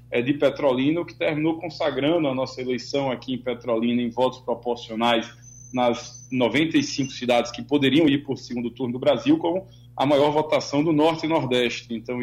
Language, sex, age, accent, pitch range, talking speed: Portuguese, male, 20-39, Brazilian, 120-140 Hz, 165 wpm